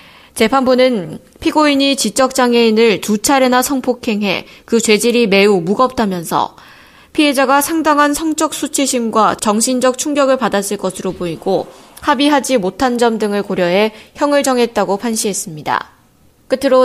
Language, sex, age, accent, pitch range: Korean, female, 20-39, native, 195-255 Hz